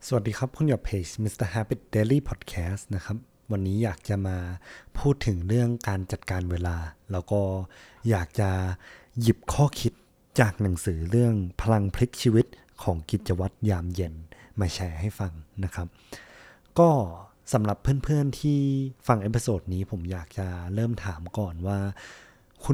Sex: male